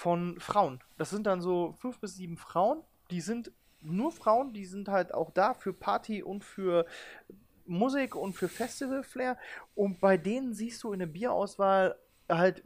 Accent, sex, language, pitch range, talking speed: German, male, German, 175-230 Hz, 170 wpm